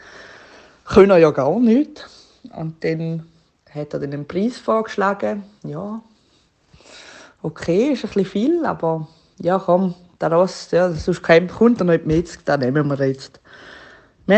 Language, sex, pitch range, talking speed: German, female, 160-205 Hz, 140 wpm